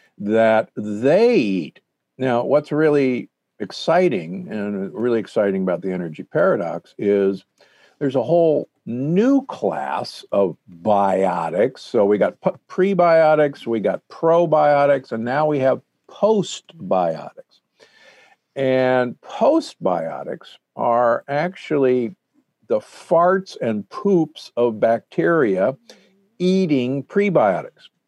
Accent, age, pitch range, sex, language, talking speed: American, 50-69, 105-170 Hz, male, English, 100 wpm